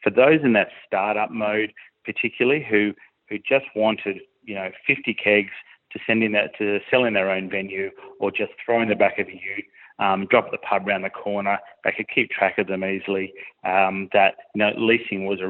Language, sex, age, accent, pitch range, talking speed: English, male, 30-49, Australian, 95-110 Hz, 215 wpm